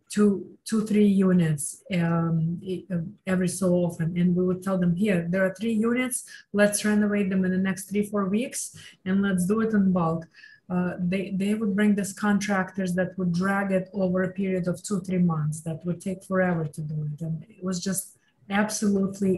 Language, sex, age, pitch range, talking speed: English, female, 20-39, 180-205 Hz, 190 wpm